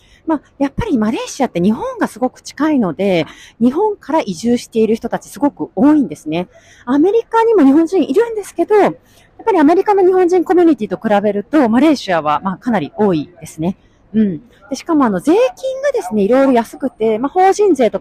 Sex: female